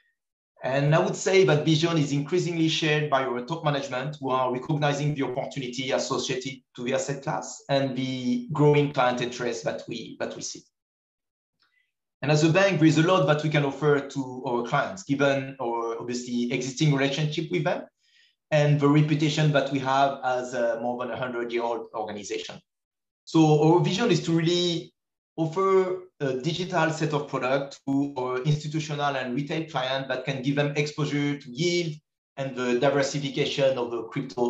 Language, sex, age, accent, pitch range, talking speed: English, male, 30-49, French, 130-155 Hz, 175 wpm